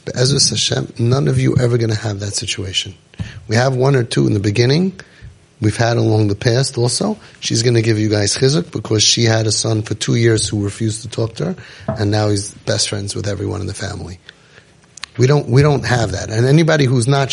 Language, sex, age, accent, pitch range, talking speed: English, male, 30-49, American, 110-150 Hz, 230 wpm